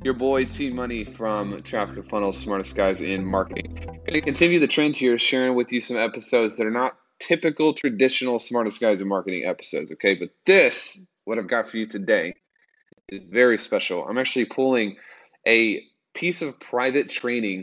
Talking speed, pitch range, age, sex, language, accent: 185 wpm, 95-125 Hz, 20-39, male, English, American